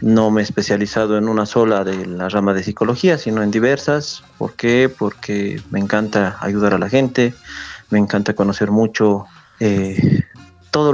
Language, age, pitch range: Spanish, 30-49, 105-115 Hz